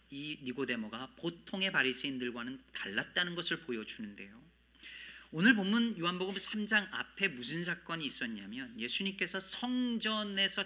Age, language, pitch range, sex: 40-59, Korean, 145-215 Hz, male